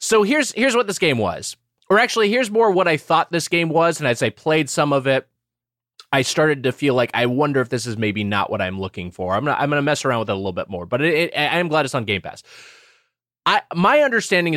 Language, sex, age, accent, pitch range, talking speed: English, male, 20-39, American, 115-160 Hz, 265 wpm